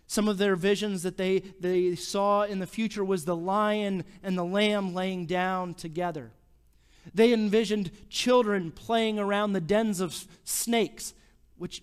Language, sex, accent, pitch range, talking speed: English, male, American, 160-200 Hz, 150 wpm